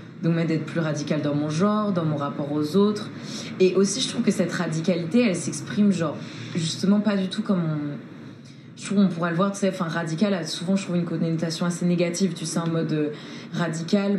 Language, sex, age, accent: French, female, 20-39, French